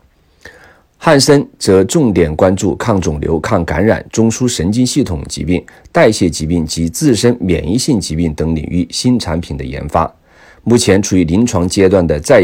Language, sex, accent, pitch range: Chinese, male, native, 80-110 Hz